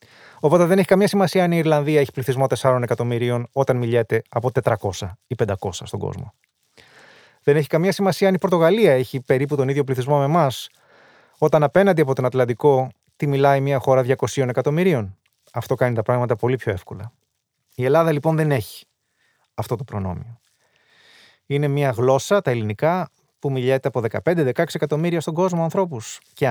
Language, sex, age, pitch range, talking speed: Greek, male, 30-49, 120-155 Hz, 170 wpm